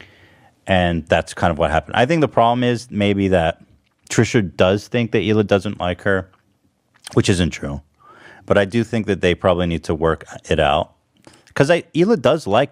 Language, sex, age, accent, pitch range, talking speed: English, male, 30-49, American, 85-105 Hz, 190 wpm